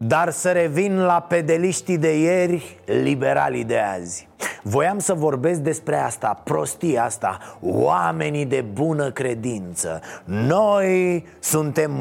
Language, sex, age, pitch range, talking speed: Romanian, male, 30-49, 145-195 Hz, 115 wpm